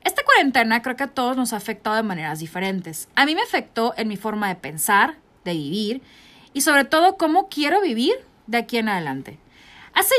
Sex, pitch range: female, 225-325 Hz